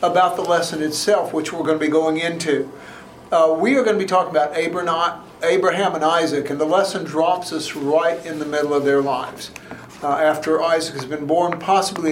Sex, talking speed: male, 205 wpm